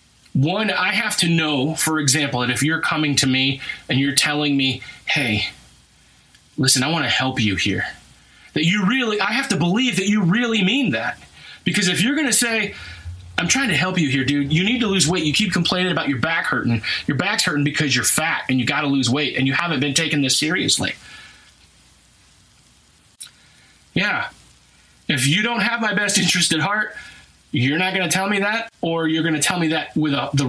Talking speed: 210 wpm